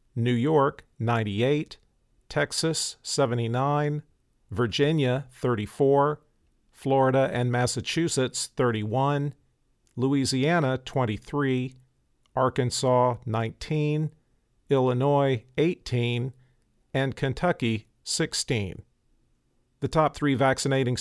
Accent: American